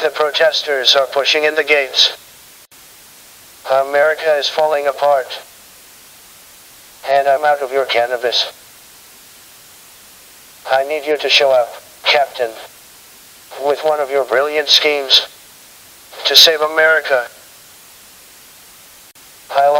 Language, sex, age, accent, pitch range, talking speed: English, male, 50-69, American, 140-155 Hz, 105 wpm